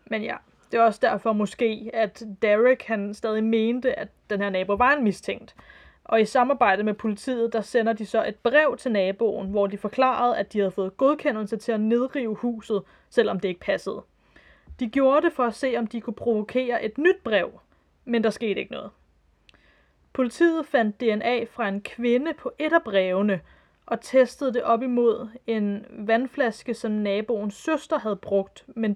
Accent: native